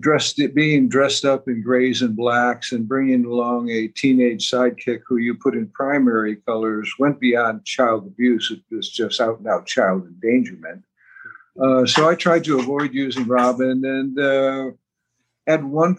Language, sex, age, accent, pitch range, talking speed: English, male, 60-79, American, 120-135 Hz, 165 wpm